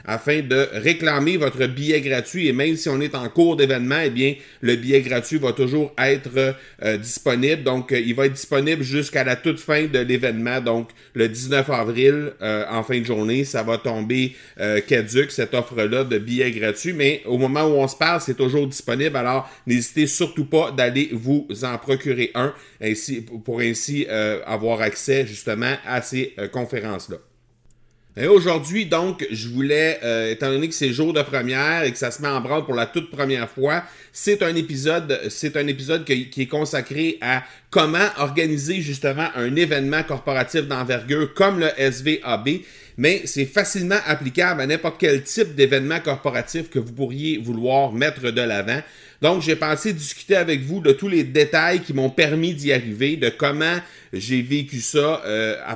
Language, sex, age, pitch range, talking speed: French, male, 30-49, 125-155 Hz, 180 wpm